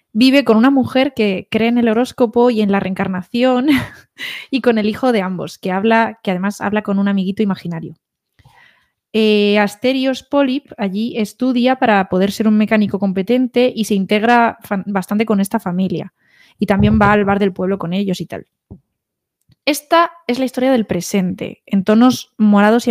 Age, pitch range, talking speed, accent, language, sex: 20-39, 200-250 Hz, 180 wpm, Spanish, Spanish, female